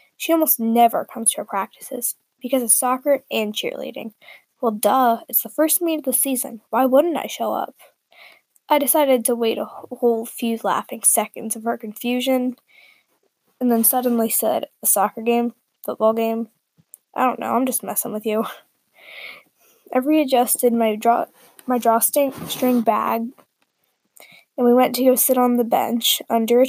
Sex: female